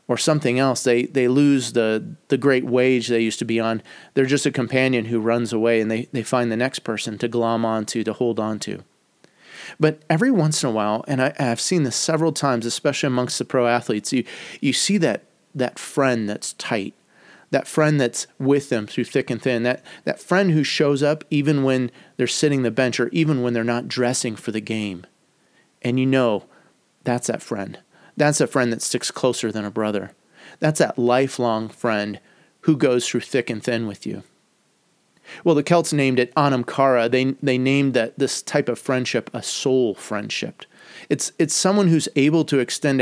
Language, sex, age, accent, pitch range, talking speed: English, male, 30-49, American, 120-150 Hz, 200 wpm